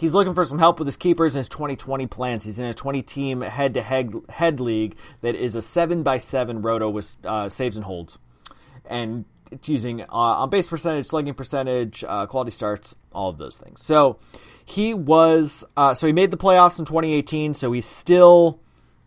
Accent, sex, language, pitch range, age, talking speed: American, male, English, 120-165 Hz, 30-49, 185 wpm